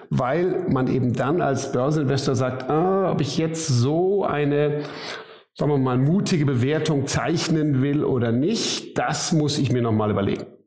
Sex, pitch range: male, 130-160 Hz